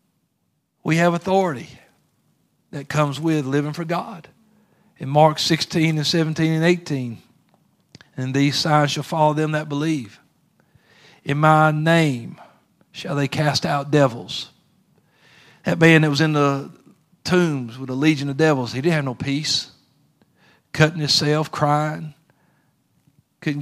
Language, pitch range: English, 135-160 Hz